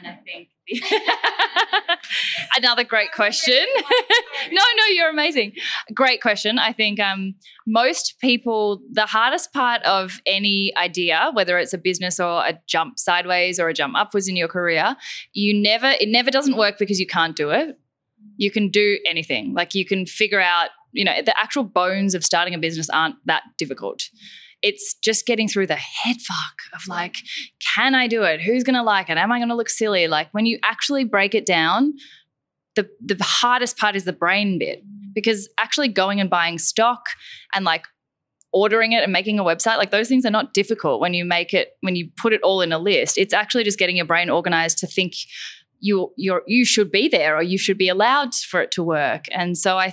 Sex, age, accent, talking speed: female, 10-29, Australian, 200 wpm